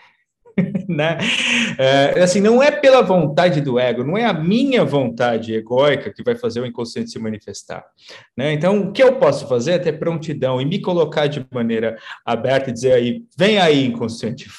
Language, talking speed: Portuguese, 180 wpm